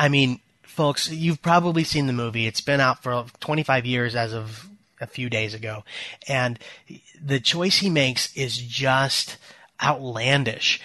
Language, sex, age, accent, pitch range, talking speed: English, male, 20-39, American, 125-155 Hz, 155 wpm